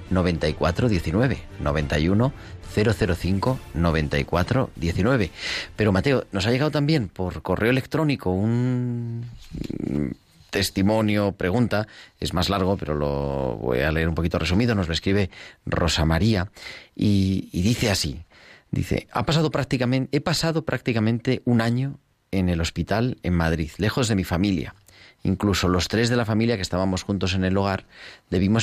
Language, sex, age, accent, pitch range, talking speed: Spanish, male, 40-59, Spanish, 90-115 Hz, 145 wpm